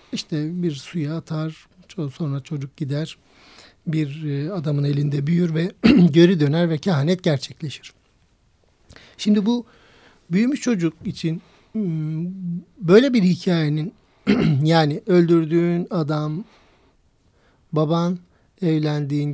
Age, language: 60-79, Turkish